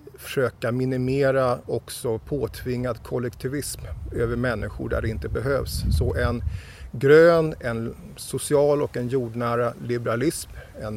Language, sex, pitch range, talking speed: English, male, 105-135 Hz, 115 wpm